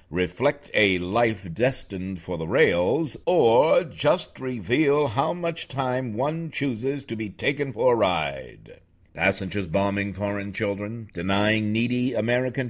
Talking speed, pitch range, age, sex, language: 130 wpm, 95-130 Hz, 60-79, male, English